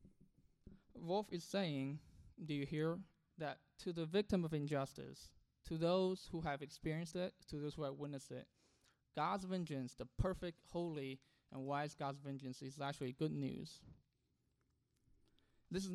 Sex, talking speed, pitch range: male, 145 wpm, 140-170 Hz